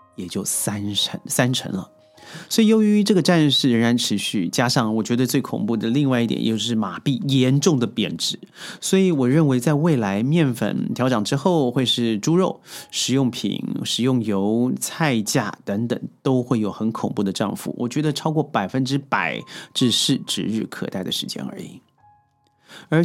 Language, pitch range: Chinese, 115-165 Hz